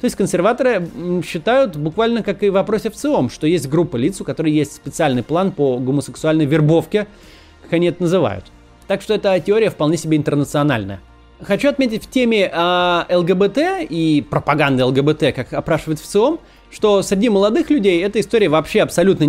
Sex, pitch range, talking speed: male, 140-195 Hz, 160 wpm